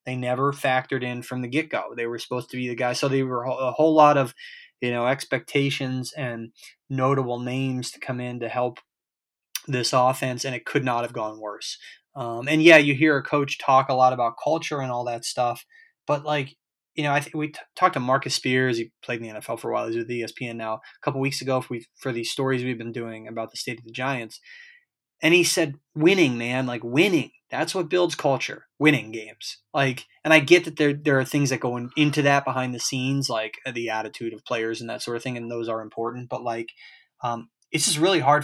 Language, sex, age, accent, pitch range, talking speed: English, male, 20-39, American, 120-140 Hz, 235 wpm